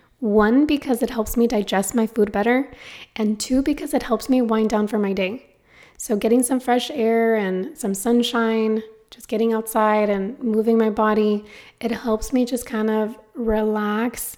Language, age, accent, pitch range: English, 20-39, American, 210-245 Hz